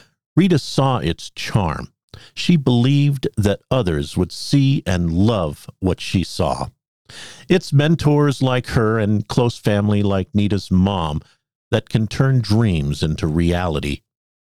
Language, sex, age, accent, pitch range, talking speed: English, male, 50-69, American, 100-150 Hz, 130 wpm